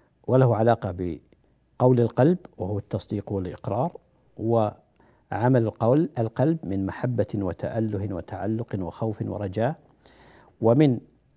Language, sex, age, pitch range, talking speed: Arabic, male, 60-79, 105-135 Hz, 90 wpm